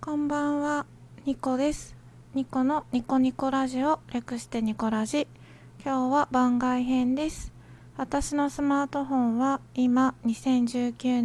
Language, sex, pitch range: Japanese, female, 215-270 Hz